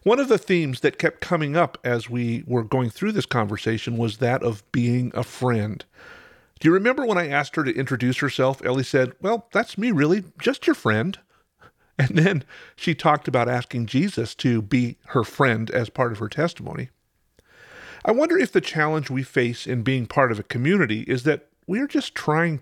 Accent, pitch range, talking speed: American, 120-175 Hz, 195 wpm